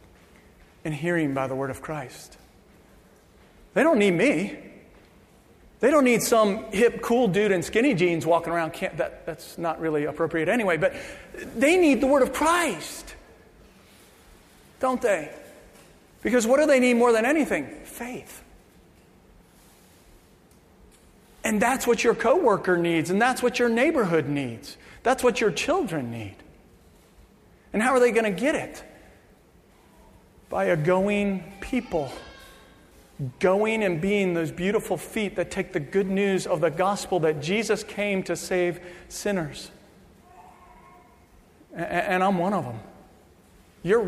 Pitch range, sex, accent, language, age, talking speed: 170-215 Hz, male, American, English, 40-59, 140 wpm